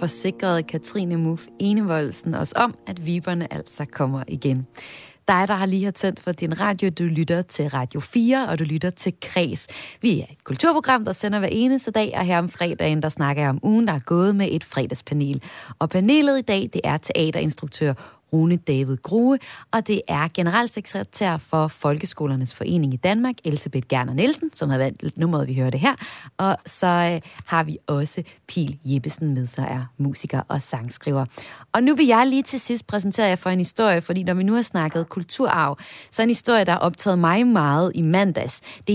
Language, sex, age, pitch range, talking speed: Danish, female, 30-49, 150-205 Hz, 200 wpm